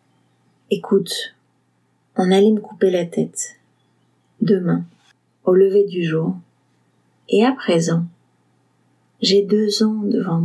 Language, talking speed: French, 110 wpm